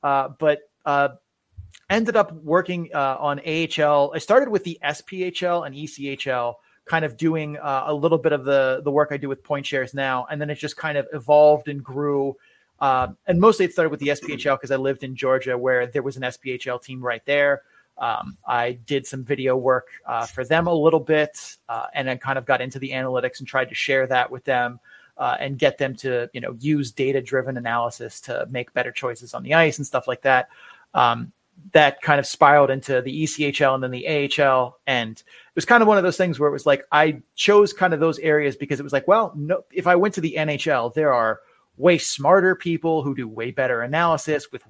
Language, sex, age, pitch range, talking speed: English, male, 30-49, 130-155 Hz, 225 wpm